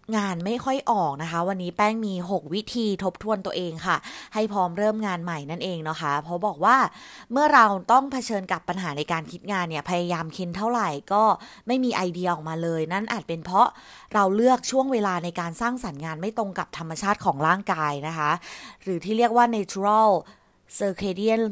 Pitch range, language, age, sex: 175-225 Hz, Thai, 20-39, female